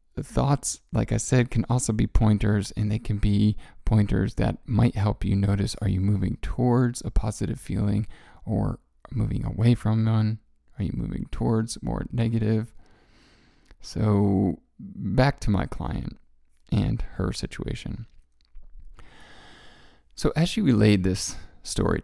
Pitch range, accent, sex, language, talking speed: 95-120 Hz, American, male, English, 135 wpm